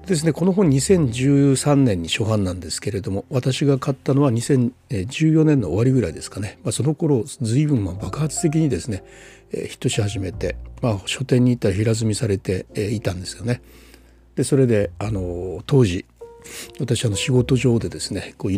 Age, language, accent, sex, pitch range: 60-79, Japanese, native, male, 95-130 Hz